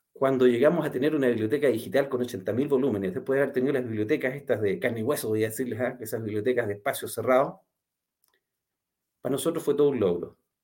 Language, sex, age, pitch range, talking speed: Spanish, male, 40-59, 120-150 Hz, 205 wpm